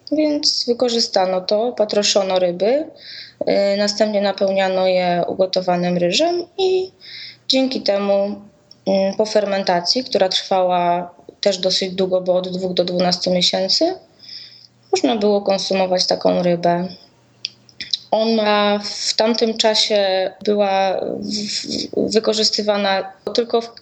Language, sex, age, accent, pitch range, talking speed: Polish, female, 20-39, native, 185-220 Hz, 95 wpm